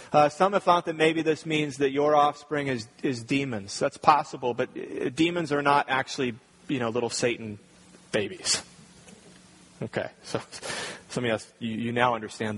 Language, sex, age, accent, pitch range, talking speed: English, male, 30-49, American, 130-160 Hz, 165 wpm